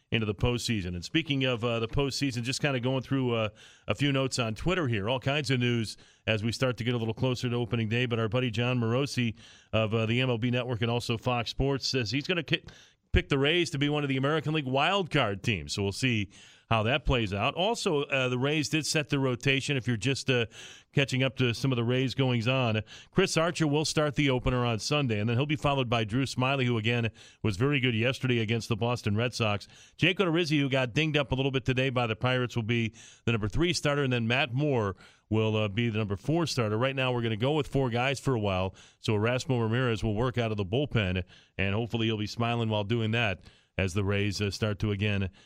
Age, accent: 40-59, American